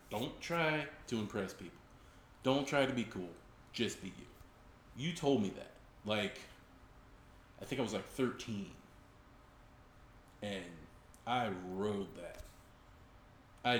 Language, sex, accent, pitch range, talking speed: English, male, American, 95-125 Hz, 125 wpm